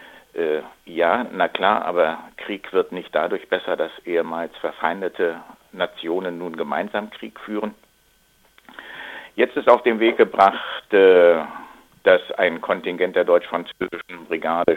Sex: male